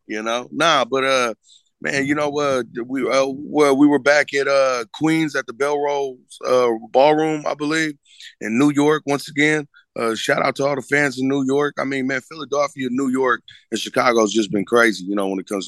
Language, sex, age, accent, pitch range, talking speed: English, male, 20-39, American, 105-135 Hz, 220 wpm